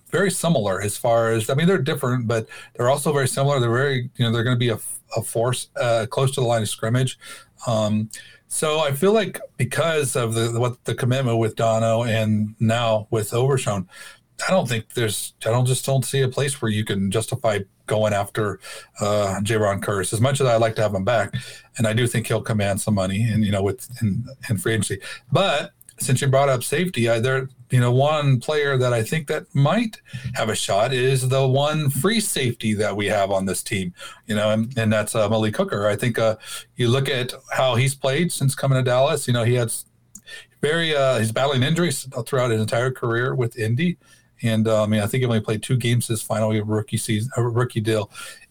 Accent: American